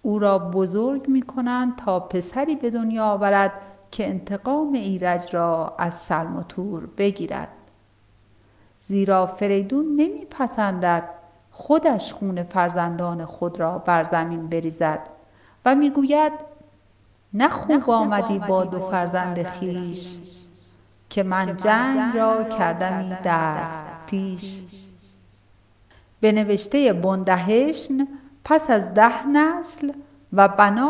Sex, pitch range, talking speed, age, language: female, 175-245 Hz, 105 wpm, 50-69, Persian